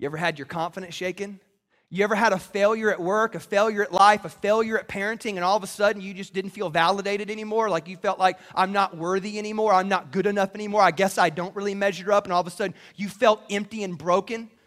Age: 30-49